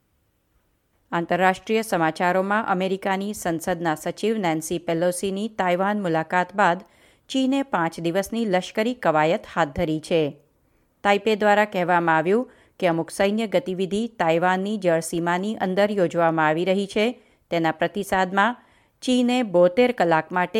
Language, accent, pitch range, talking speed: Gujarati, native, 170-210 Hz, 110 wpm